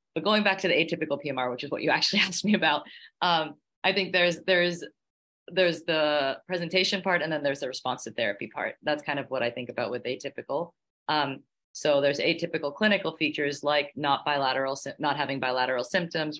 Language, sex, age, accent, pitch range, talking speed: English, female, 30-49, American, 125-150 Hz, 200 wpm